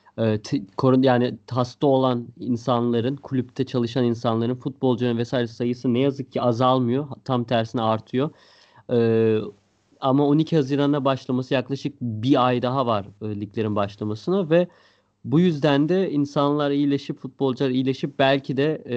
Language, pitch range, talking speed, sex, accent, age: Turkish, 120-155 Hz, 125 wpm, male, native, 30-49